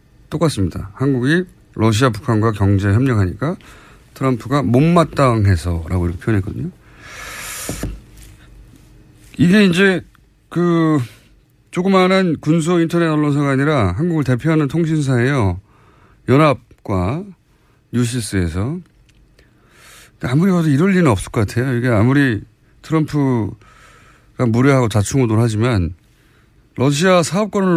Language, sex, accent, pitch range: Korean, male, native, 105-155 Hz